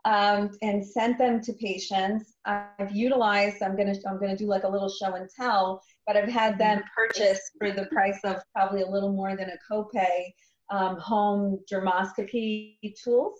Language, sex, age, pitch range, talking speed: English, female, 30-49, 190-210 Hz, 170 wpm